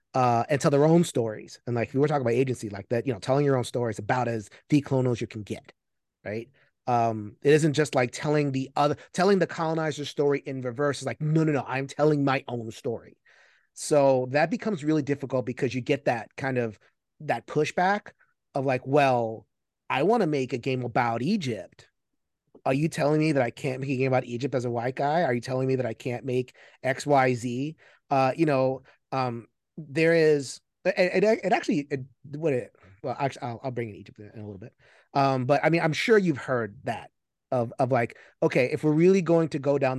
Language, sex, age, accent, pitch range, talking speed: English, male, 30-49, American, 120-150 Hz, 220 wpm